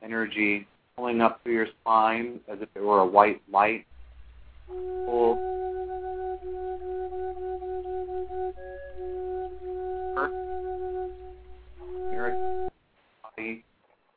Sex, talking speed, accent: male, 70 wpm, American